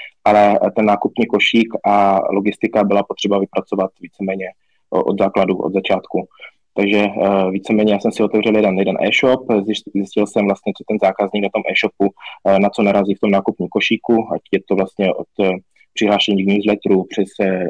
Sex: male